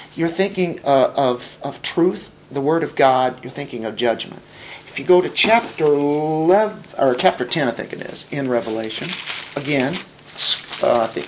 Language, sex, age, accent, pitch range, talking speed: English, male, 50-69, American, 145-195 Hz, 175 wpm